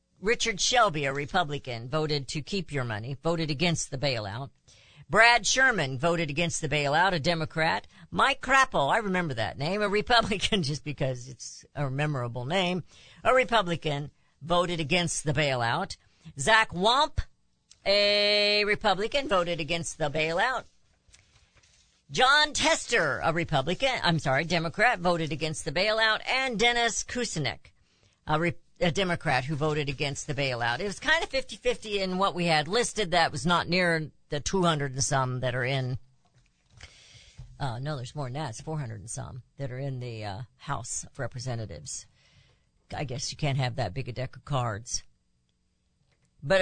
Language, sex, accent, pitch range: English, female, American, 125-180 Hz